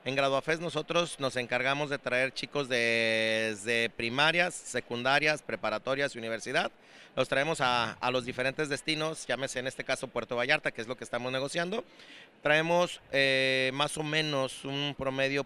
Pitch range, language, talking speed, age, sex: 120-150 Hz, Spanish, 155 wpm, 30-49, male